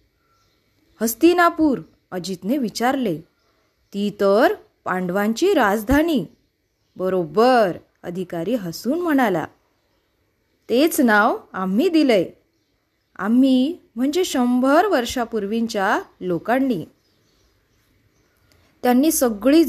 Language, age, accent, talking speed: Marathi, 20-39, native, 65 wpm